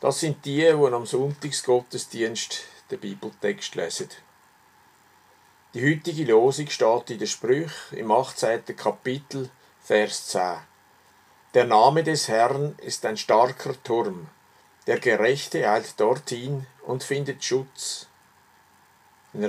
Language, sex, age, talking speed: German, male, 50-69, 115 wpm